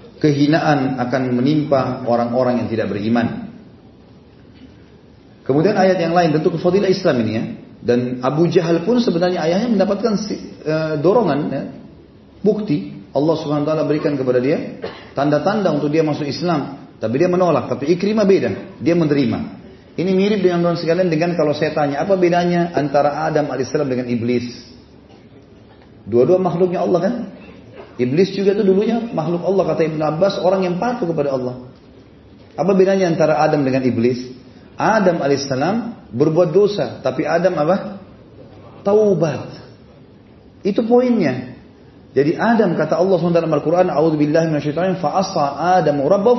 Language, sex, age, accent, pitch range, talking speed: Indonesian, male, 40-59, native, 140-185 Hz, 130 wpm